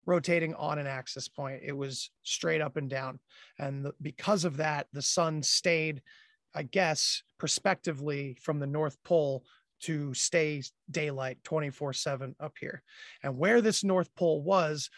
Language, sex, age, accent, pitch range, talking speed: English, male, 30-49, American, 140-175 Hz, 150 wpm